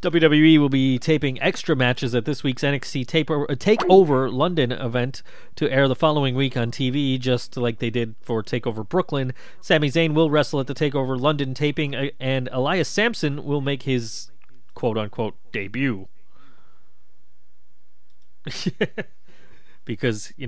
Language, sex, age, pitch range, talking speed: English, male, 30-49, 120-155 Hz, 135 wpm